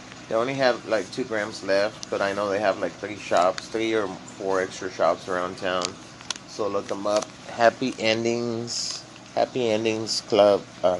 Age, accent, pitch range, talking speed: 30-49, American, 65-105 Hz, 180 wpm